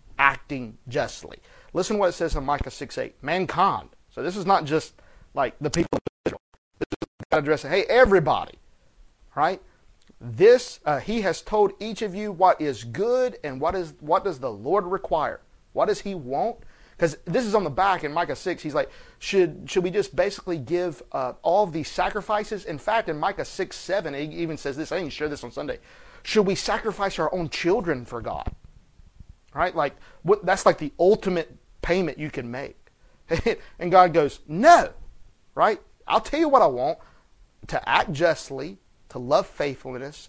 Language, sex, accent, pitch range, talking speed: English, male, American, 140-195 Hz, 185 wpm